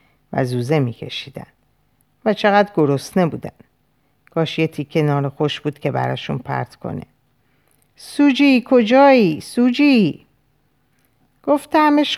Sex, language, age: female, Persian, 50-69